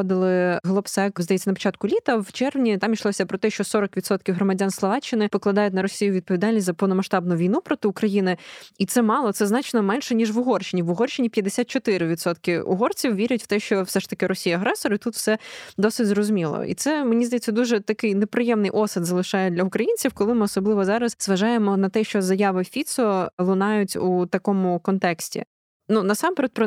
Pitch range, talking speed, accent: 190-220 Hz, 180 wpm, native